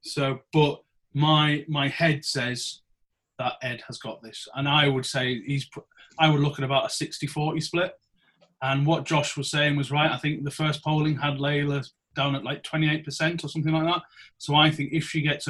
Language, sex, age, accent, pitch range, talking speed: English, male, 30-49, British, 135-160 Hz, 200 wpm